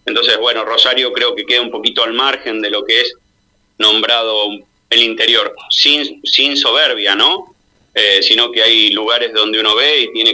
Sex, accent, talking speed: male, Argentinian, 180 wpm